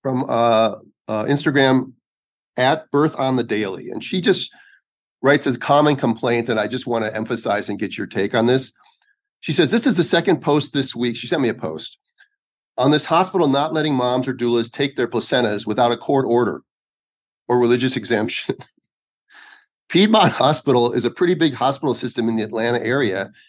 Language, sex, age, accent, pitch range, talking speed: English, male, 40-59, American, 115-155 Hz, 185 wpm